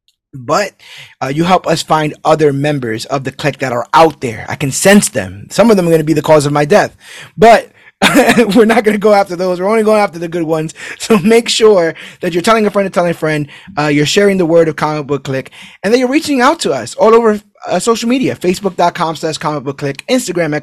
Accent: American